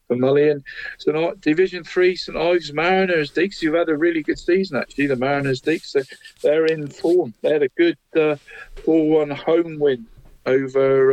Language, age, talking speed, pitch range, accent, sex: English, 50-69, 155 wpm, 130-175 Hz, British, male